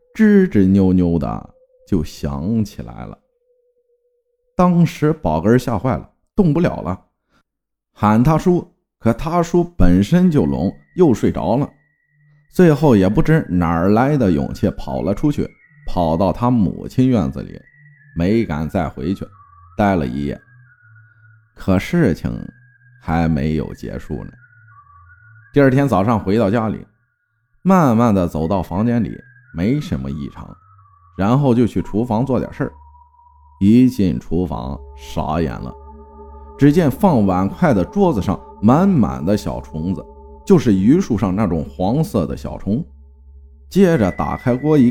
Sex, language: male, Chinese